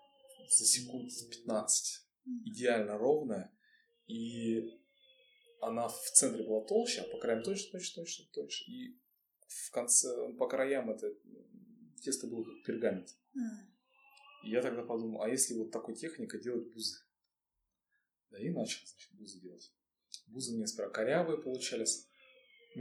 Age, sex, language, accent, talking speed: 20-39, male, Russian, native, 125 wpm